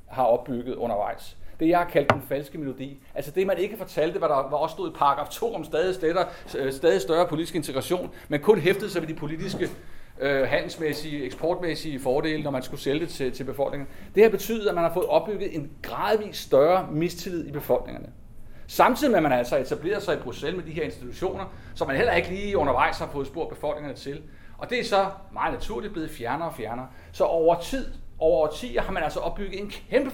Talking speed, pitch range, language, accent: 215 wpm, 140-185 Hz, Danish, native